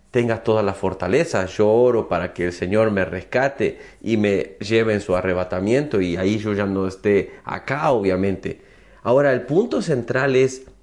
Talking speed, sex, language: 170 wpm, male, Spanish